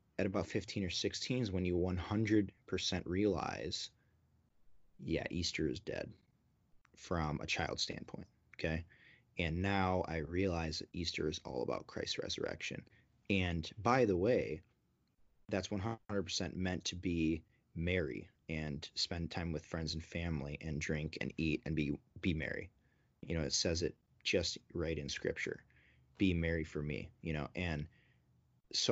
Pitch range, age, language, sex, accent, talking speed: 80-95 Hz, 30-49, English, male, American, 150 wpm